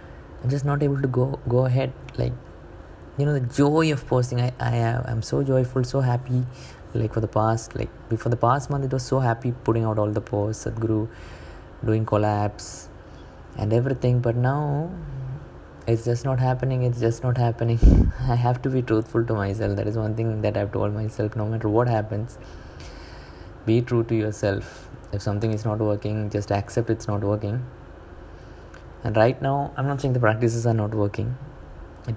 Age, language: 20-39, English